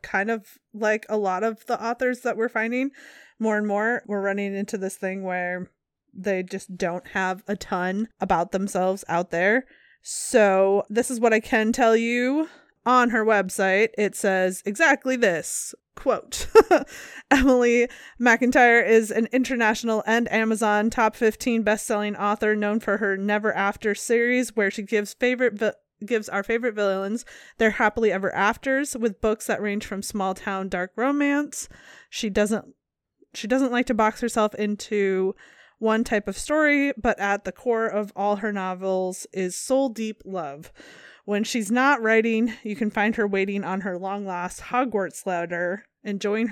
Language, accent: English, American